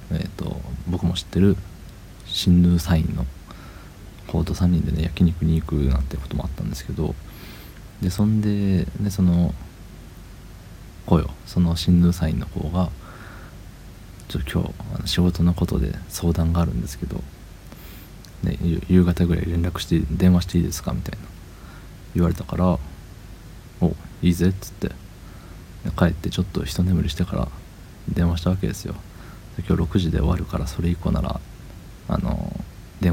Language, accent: Japanese, native